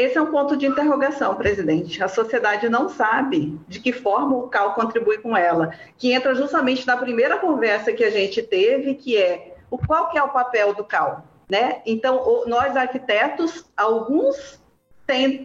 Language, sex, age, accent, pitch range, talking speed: Portuguese, female, 40-59, Brazilian, 205-285 Hz, 165 wpm